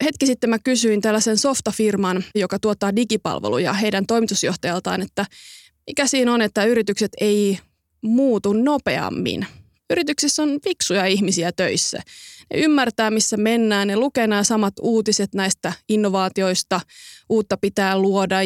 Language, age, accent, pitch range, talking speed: Finnish, 20-39, native, 195-250 Hz, 125 wpm